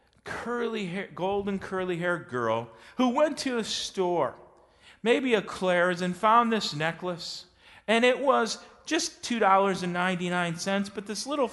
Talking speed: 135 wpm